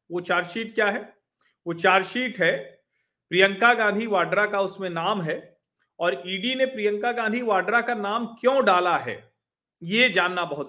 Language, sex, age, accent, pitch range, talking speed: Hindi, male, 40-59, native, 150-215 Hz, 170 wpm